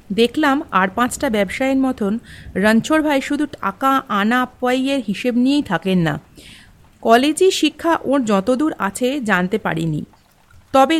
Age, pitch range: 50-69, 215-295 Hz